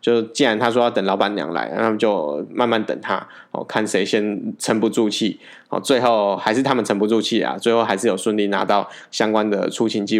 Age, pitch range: 20-39, 105-120 Hz